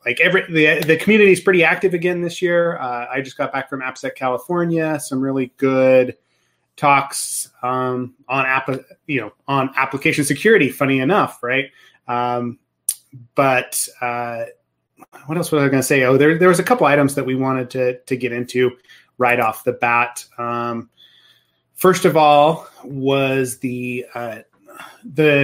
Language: English